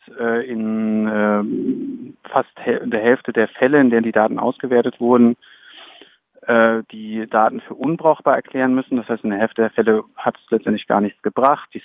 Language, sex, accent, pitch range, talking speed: German, male, German, 110-125 Hz, 160 wpm